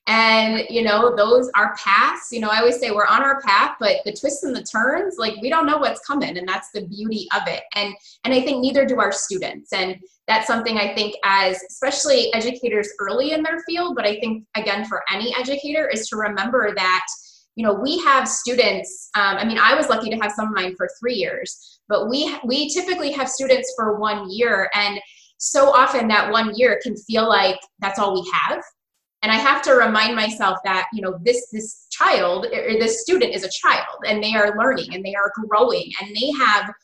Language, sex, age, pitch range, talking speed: English, female, 20-39, 200-260 Hz, 220 wpm